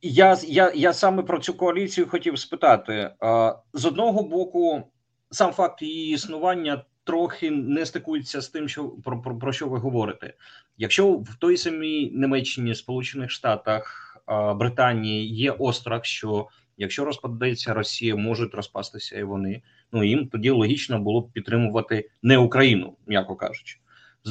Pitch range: 115-170 Hz